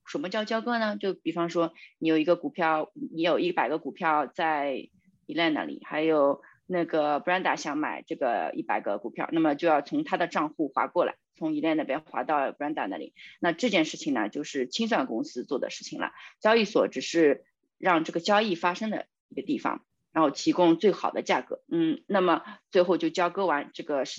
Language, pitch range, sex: Chinese, 165-220 Hz, female